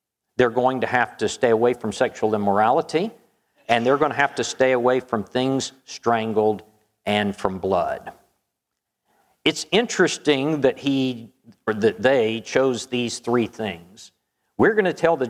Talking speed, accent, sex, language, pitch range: 155 wpm, American, male, English, 110-140 Hz